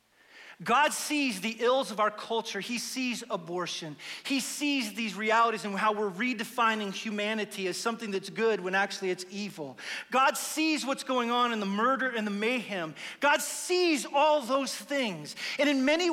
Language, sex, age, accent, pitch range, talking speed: English, male, 40-59, American, 215-290 Hz, 170 wpm